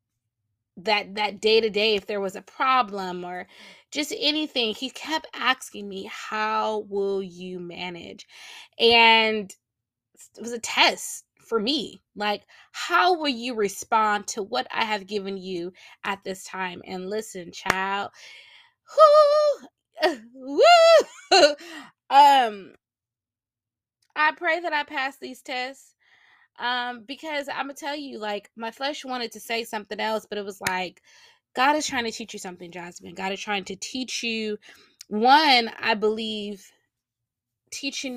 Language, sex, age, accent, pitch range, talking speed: English, female, 20-39, American, 195-265 Hz, 140 wpm